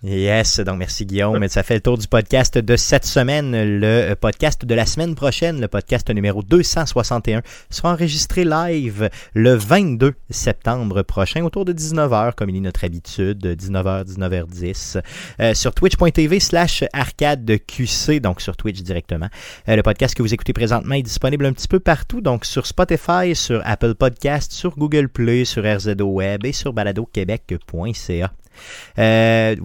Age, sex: 30-49, male